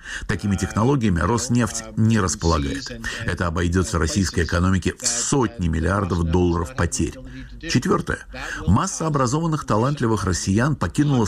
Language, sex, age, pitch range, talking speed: Russian, male, 60-79, 90-115 Hz, 105 wpm